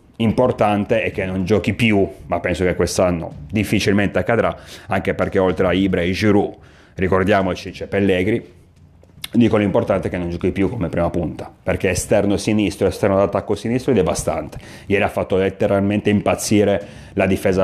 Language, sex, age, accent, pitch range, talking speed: Italian, male, 30-49, native, 95-110 Hz, 165 wpm